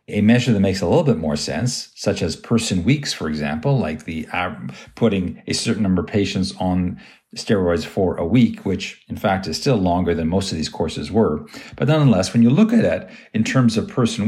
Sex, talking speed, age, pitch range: male, 220 wpm, 50-69, 100-130 Hz